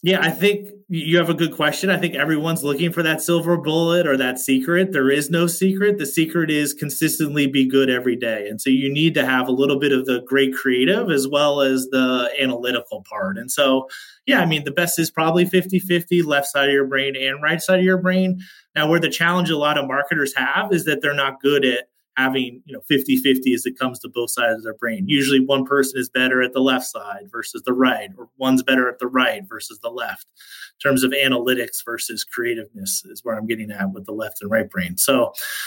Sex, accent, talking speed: male, American, 230 wpm